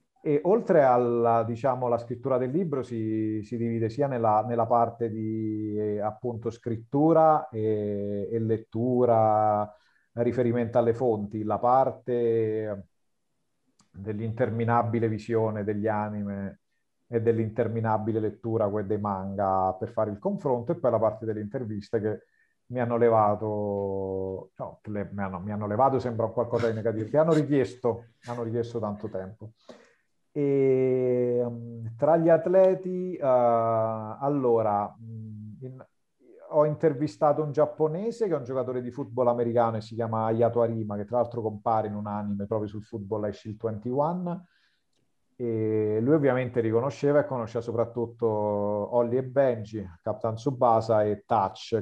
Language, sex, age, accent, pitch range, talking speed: Italian, male, 40-59, native, 105-125 Hz, 135 wpm